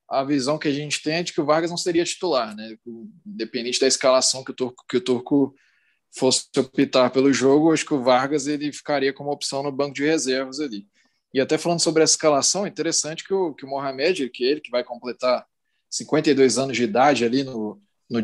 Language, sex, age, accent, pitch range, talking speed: Portuguese, male, 20-39, Brazilian, 125-170 Hz, 215 wpm